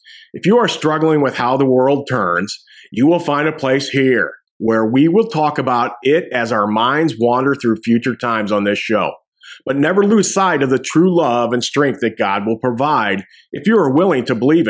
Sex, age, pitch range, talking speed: male, 50-69, 120-165 Hz, 210 wpm